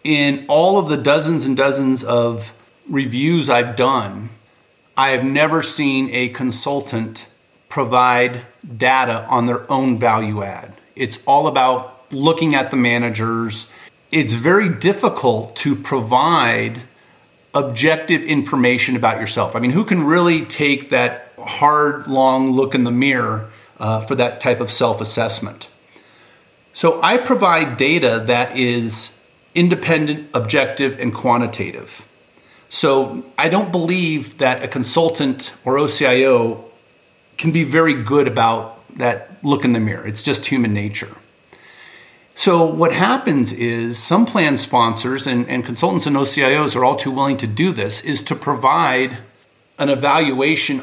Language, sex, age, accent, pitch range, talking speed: English, male, 40-59, American, 120-145 Hz, 135 wpm